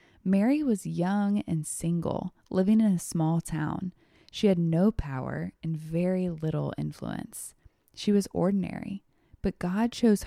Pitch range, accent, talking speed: 165-200 Hz, American, 140 wpm